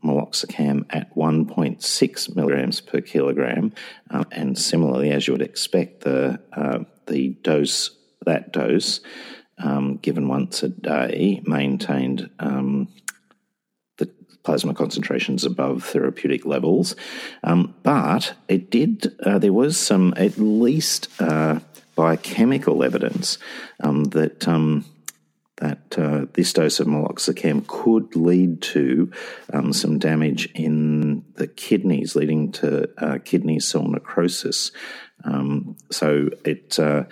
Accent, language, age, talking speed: Australian, English, 50-69, 120 wpm